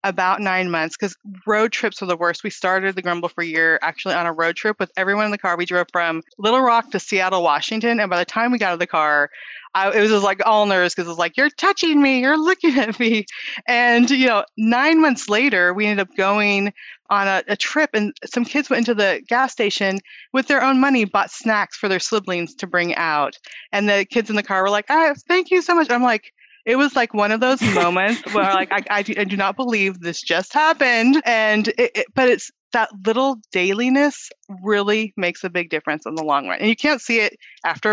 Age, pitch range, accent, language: 30-49, 185-240 Hz, American, English